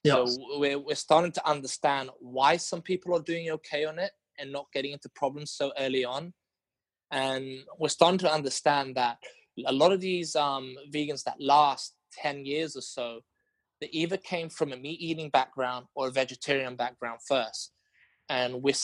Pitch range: 130-155 Hz